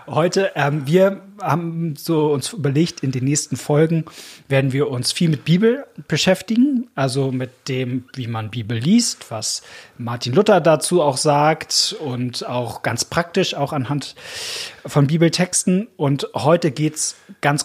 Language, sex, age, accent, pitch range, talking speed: German, male, 30-49, German, 130-165 Hz, 150 wpm